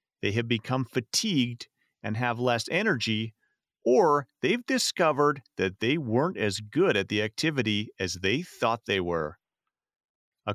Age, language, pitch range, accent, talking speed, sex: 40-59, English, 110-155 Hz, American, 140 wpm, male